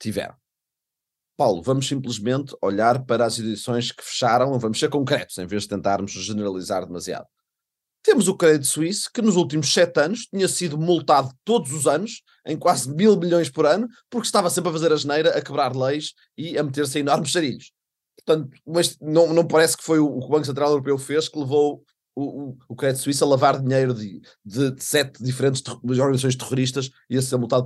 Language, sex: Portuguese, male